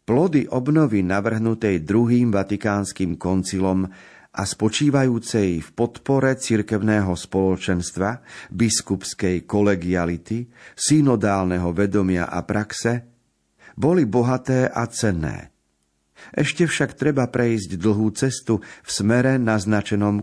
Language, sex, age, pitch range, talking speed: Slovak, male, 50-69, 95-120 Hz, 90 wpm